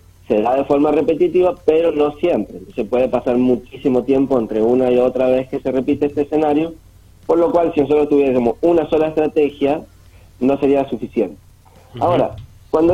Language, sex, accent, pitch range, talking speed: Spanish, male, Argentinian, 120-165 Hz, 170 wpm